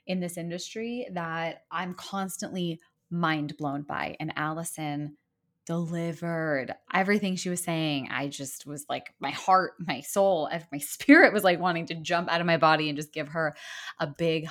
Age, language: 20-39, English